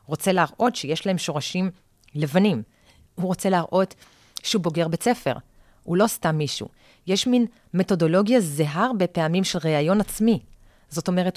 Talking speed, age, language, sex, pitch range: 155 wpm, 30-49, Hebrew, female, 160-205 Hz